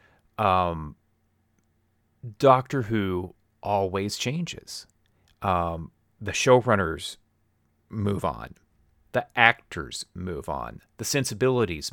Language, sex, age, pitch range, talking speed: English, male, 30-49, 95-115 Hz, 80 wpm